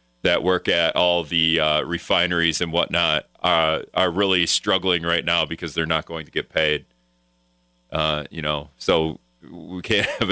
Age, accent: 30-49, American